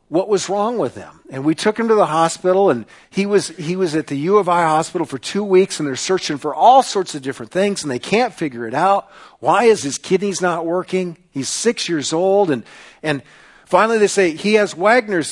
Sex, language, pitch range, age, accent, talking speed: male, English, 125-190 Hz, 50-69, American, 230 wpm